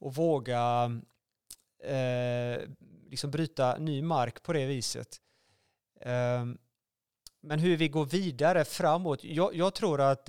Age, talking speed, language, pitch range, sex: 30-49, 120 wpm, Swedish, 125-160 Hz, male